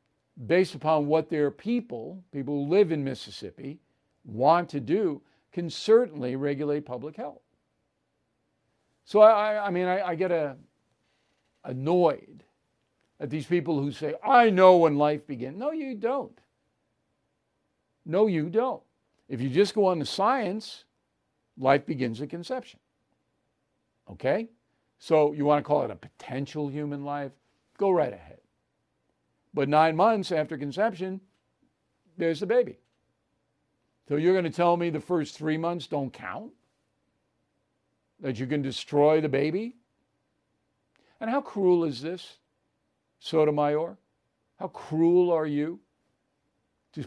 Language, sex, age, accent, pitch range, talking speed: English, male, 50-69, American, 145-185 Hz, 135 wpm